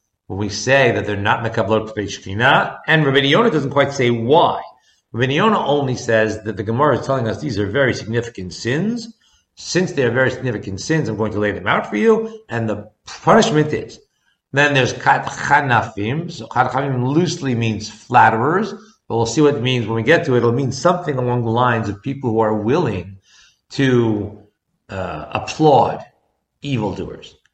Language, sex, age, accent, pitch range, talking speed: English, male, 50-69, American, 110-140 Hz, 175 wpm